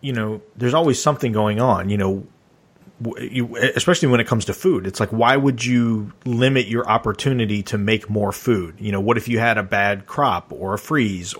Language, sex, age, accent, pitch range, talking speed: English, male, 30-49, American, 100-120 Hz, 205 wpm